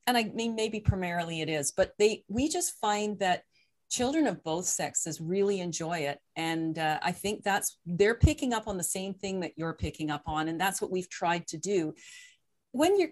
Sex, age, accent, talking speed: female, 40-59, American, 210 wpm